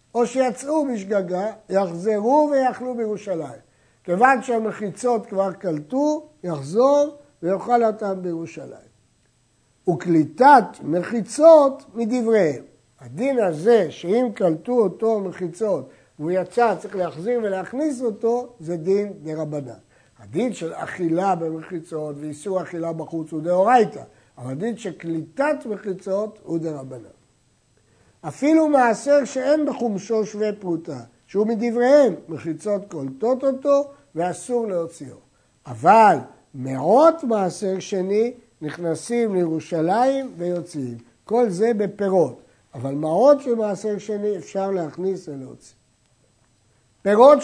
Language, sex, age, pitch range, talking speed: Hebrew, male, 60-79, 165-240 Hz, 100 wpm